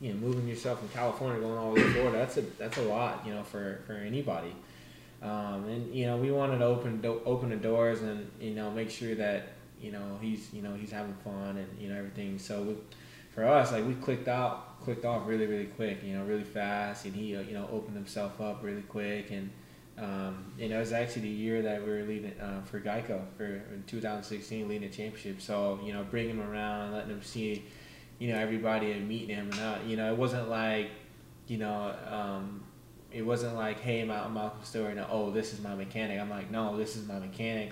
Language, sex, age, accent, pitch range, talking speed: English, male, 20-39, American, 100-110 Hz, 230 wpm